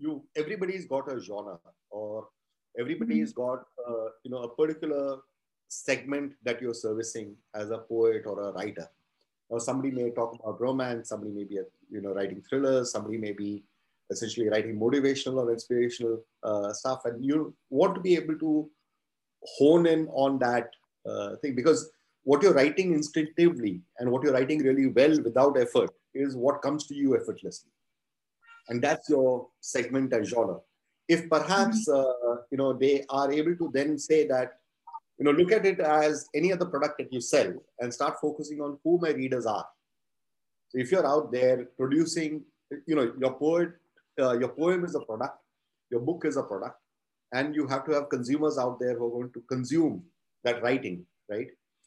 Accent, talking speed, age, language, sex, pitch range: Indian, 180 wpm, 30-49, English, male, 120-155 Hz